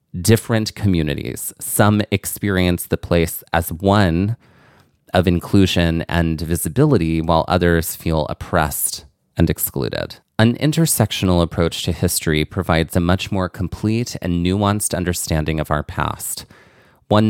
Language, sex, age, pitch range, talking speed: English, male, 30-49, 80-95 Hz, 120 wpm